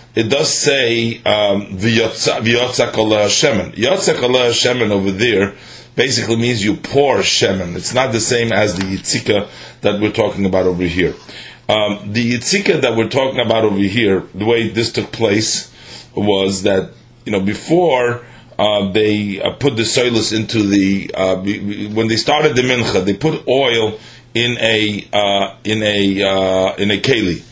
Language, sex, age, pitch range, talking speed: English, male, 40-59, 100-120 Hz, 155 wpm